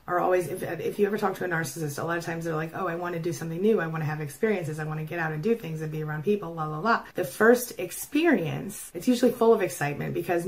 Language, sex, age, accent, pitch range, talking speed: English, female, 30-49, American, 155-185 Hz, 300 wpm